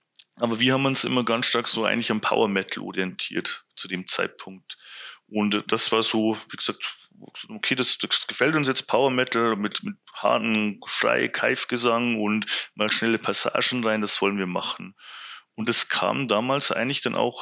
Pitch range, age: 105-120 Hz, 30-49